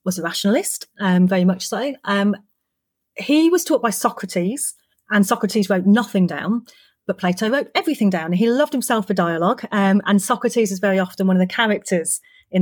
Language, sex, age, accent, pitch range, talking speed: English, female, 30-49, British, 185-230 Hz, 190 wpm